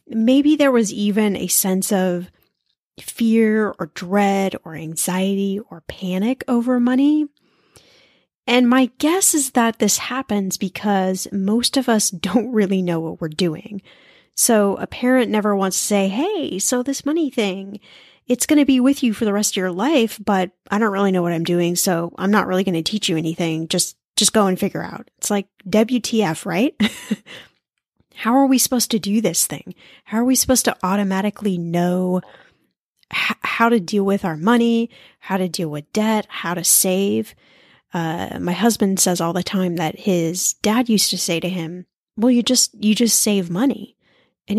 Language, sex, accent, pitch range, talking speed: English, female, American, 185-245 Hz, 180 wpm